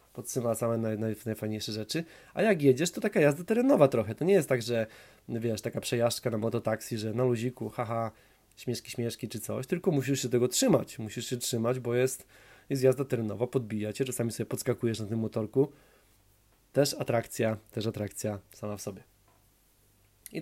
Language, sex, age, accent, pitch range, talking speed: Polish, male, 20-39, native, 110-130 Hz, 175 wpm